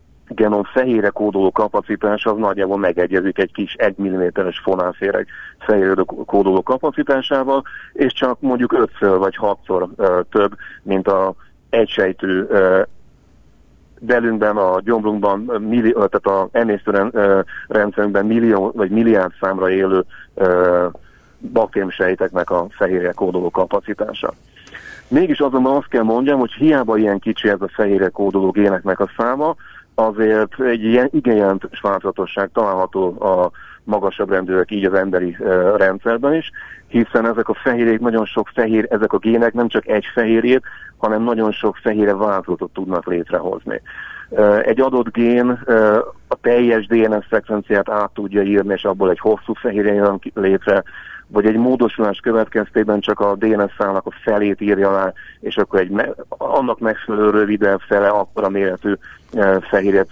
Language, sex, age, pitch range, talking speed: Hungarian, male, 40-59, 95-115 Hz, 130 wpm